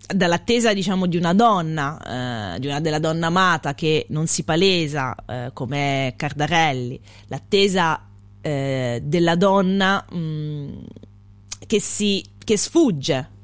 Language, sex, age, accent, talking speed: Italian, female, 30-49, native, 100 wpm